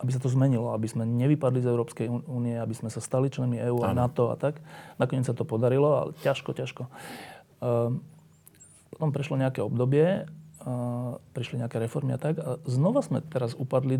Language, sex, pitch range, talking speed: Slovak, male, 120-155 Hz, 185 wpm